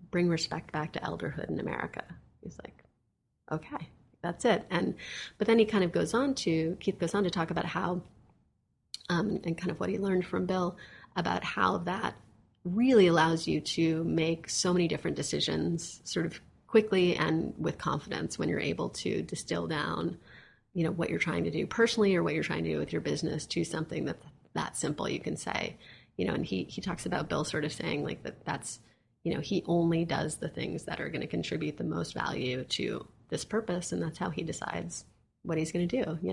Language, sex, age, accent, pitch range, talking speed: English, female, 30-49, American, 155-180 Hz, 215 wpm